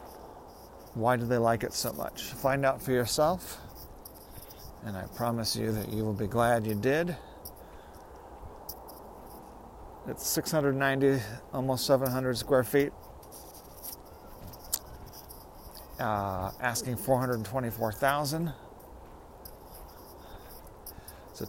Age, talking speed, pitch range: 40-59, 110 wpm, 110-140 Hz